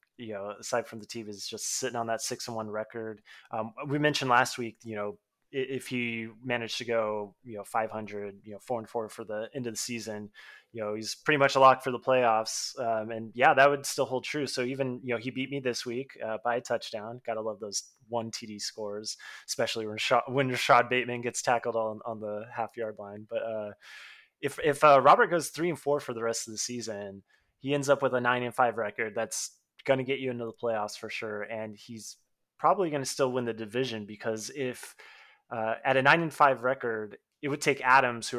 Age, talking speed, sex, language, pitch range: 20-39, 240 wpm, male, English, 110-130 Hz